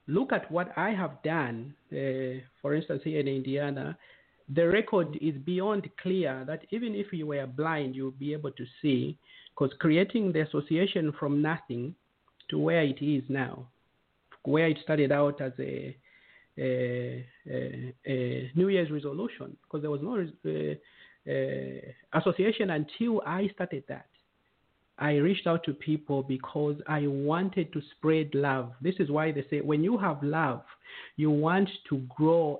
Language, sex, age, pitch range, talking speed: English, male, 50-69, 140-175 Hz, 160 wpm